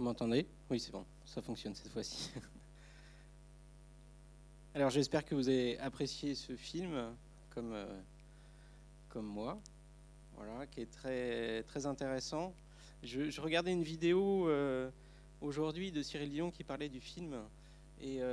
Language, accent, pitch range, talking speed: French, French, 125-155 Hz, 140 wpm